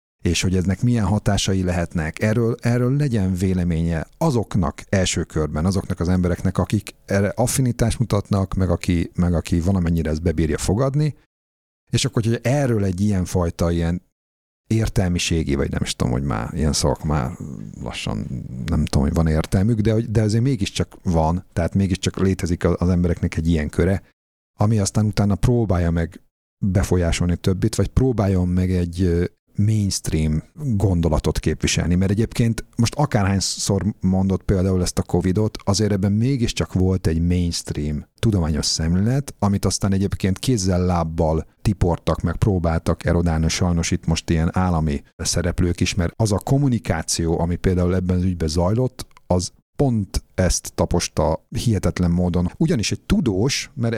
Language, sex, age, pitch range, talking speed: Hungarian, male, 50-69, 85-105 Hz, 145 wpm